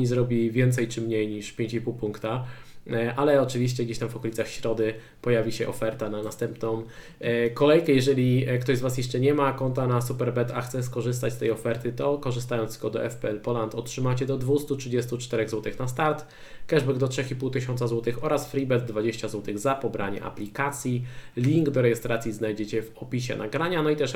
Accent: native